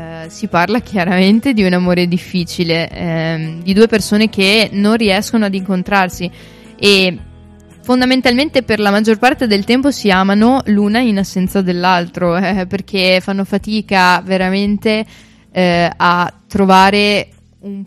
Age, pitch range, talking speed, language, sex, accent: 20-39, 175-205 Hz, 130 wpm, Italian, female, native